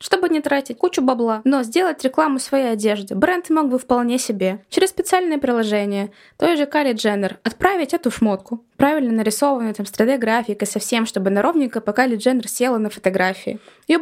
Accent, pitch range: native, 200-255 Hz